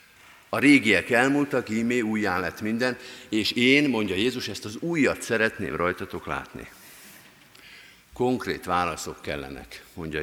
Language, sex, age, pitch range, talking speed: Hungarian, male, 50-69, 100-125 Hz, 125 wpm